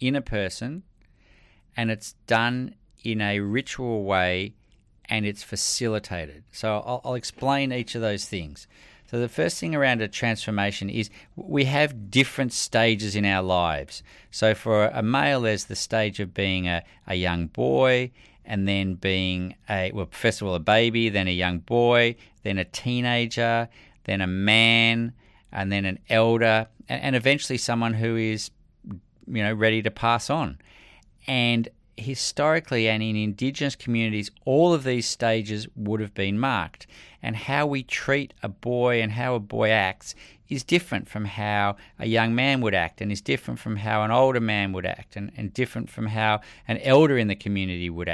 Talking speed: 175 wpm